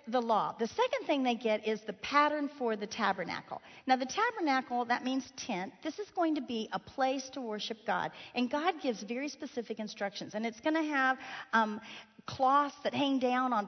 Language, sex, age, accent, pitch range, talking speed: English, female, 40-59, American, 215-275 Hz, 195 wpm